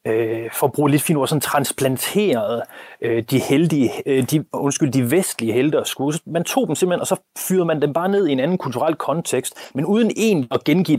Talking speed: 200 wpm